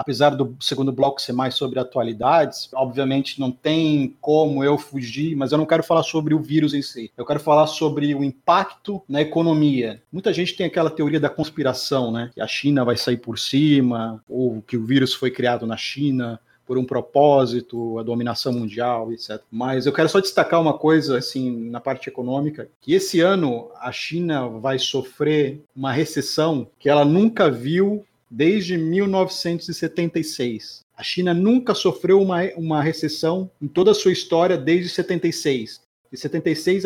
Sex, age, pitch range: male, 40-59, 125-165 Hz